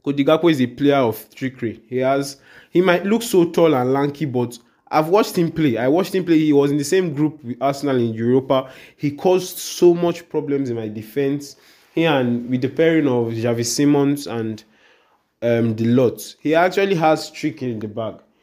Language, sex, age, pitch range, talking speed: English, male, 20-39, 120-155 Hz, 200 wpm